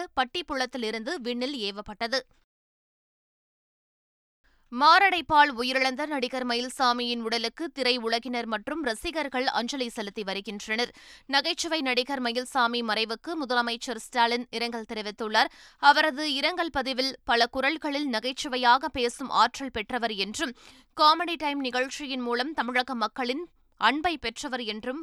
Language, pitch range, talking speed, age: Tamil, 230-275 Hz, 100 wpm, 20-39